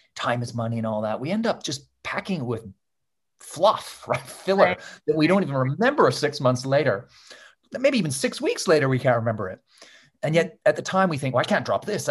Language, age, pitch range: English, 30-49, 120-180 Hz